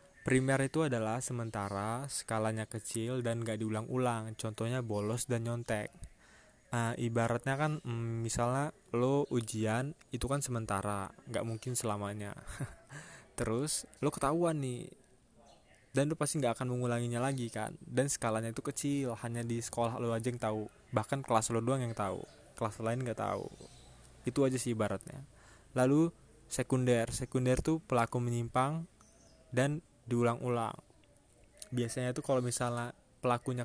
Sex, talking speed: male, 135 wpm